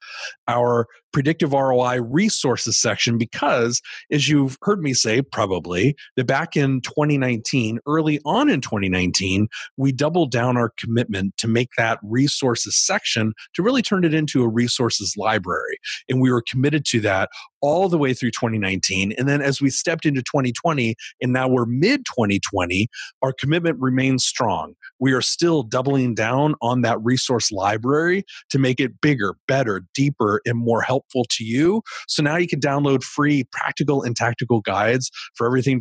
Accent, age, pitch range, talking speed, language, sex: American, 30-49, 115-145 Hz, 165 wpm, English, male